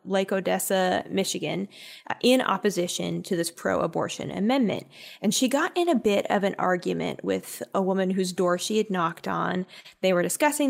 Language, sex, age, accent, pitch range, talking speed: English, female, 20-39, American, 180-220 Hz, 170 wpm